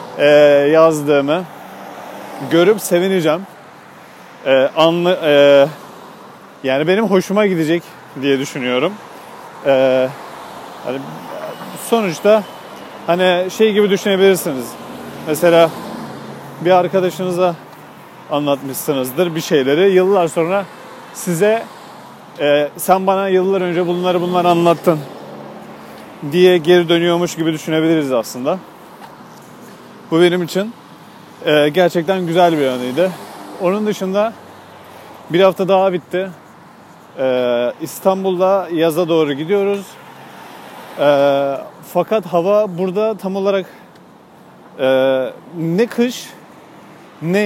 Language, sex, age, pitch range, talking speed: Turkish, male, 40-59, 155-195 Hz, 85 wpm